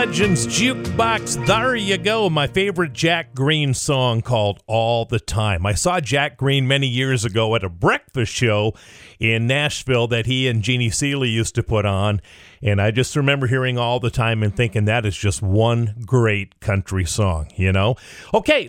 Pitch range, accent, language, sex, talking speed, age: 115-155 Hz, American, English, male, 180 wpm, 40-59